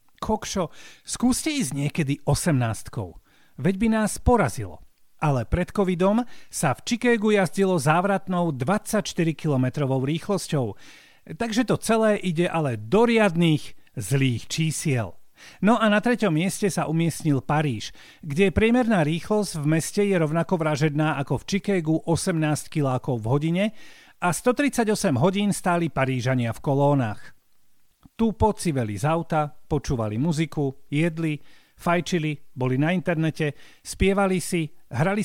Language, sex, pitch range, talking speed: Slovak, male, 140-195 Hz, 125 wpm